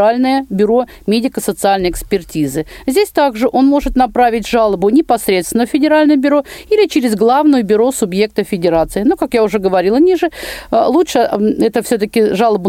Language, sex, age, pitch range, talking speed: Russian, female, 50-69, 220-295 Hz, 140 wpm